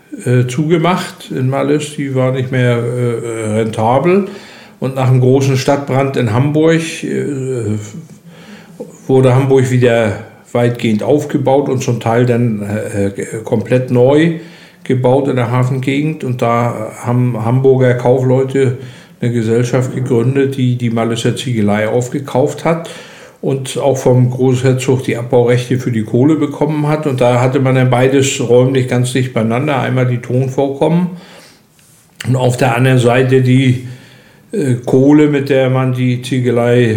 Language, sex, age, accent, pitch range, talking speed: German, male, 60-79, German, 120-145 Hz, 130 wpm